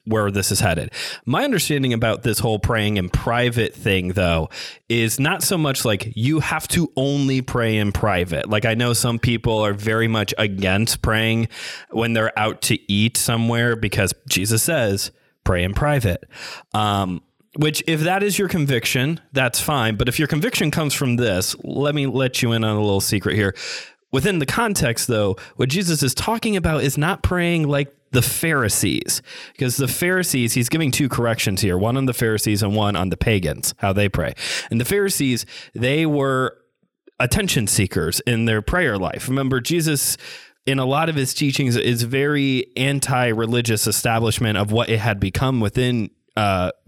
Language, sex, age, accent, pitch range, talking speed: English, male, 30-49, American, 105-140 Hz, 180 wpm